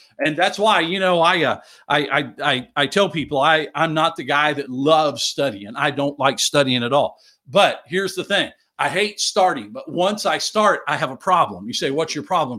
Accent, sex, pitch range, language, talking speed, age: American, male, 150-200 Hz, English, 225 wpm, 50-69